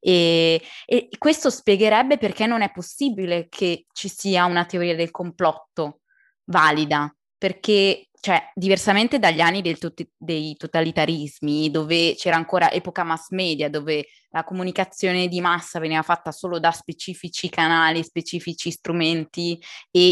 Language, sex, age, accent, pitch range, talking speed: Italian, female, 20-39, native, 160-185 Hz, 135 wpm